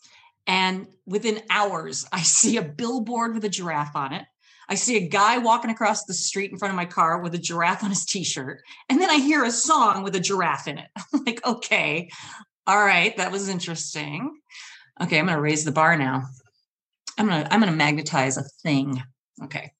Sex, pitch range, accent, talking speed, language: female, 165-220 Hz, American, 205 wpm, English